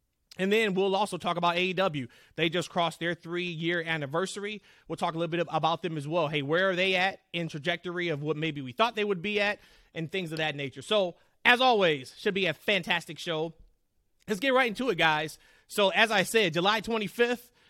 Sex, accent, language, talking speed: male, American, English, 215 wpm